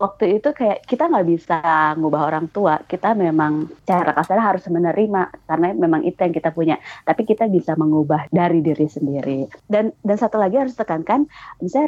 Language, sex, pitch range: Indonesian, female, 155-200 Hz